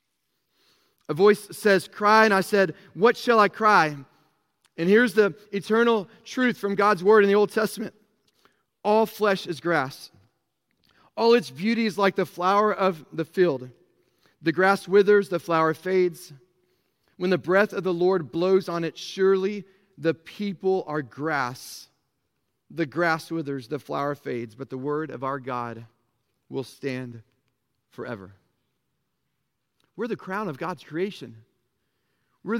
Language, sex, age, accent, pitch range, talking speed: English, male, 40-59, American, 140-200 Hz, 145 wpm